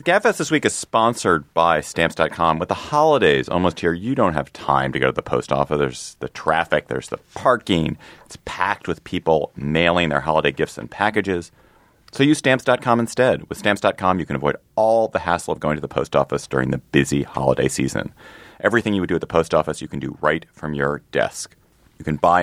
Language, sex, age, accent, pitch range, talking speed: English, male, 30-49, American, 70-100 Hz, 210 wpm